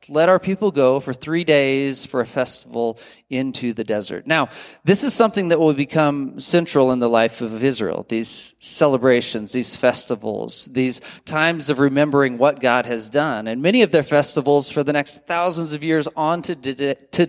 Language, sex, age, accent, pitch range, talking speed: English, male, 40-59, American, 125-165 Hz, 175 wpm